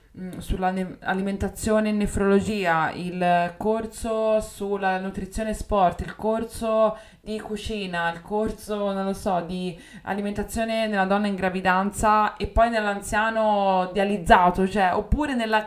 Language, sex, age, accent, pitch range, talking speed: Italian, female, 20-39, native, 190-225 Hz, 125 wpm